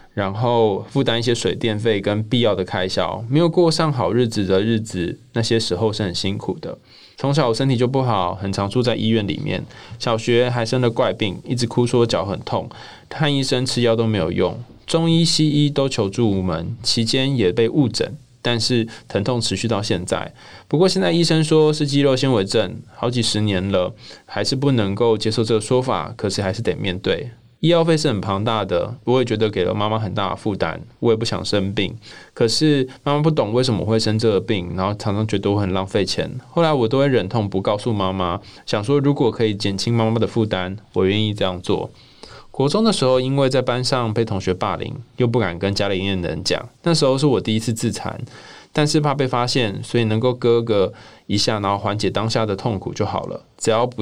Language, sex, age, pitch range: Chinese, male, 20-39, 105-130 Hz